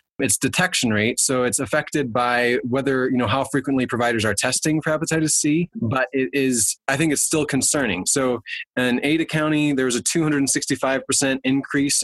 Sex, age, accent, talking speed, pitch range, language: male, 20-39, American, 180 wpm, 120-140 Hz, English